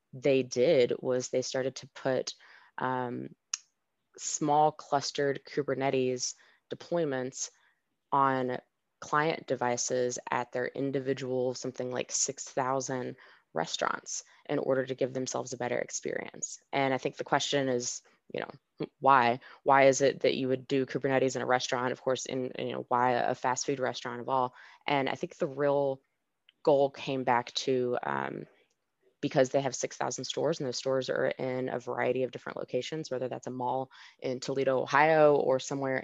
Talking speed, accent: 165 wpm, American